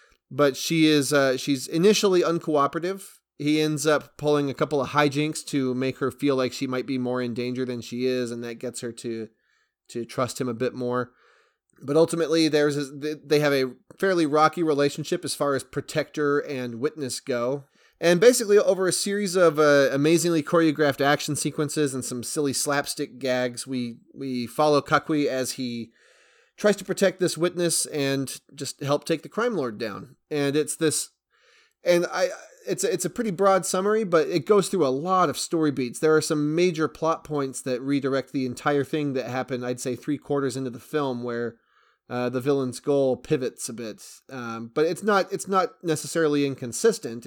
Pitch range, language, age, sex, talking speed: 130-165 Hz, English, 30-49, male, 190 wpm